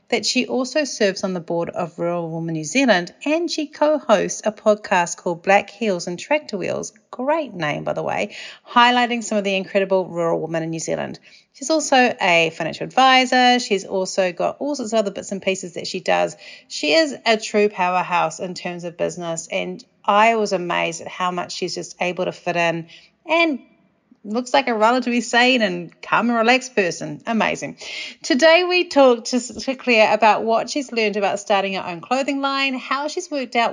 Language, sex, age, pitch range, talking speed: English, female, 40-59, 185-250 Hz, 195 wpm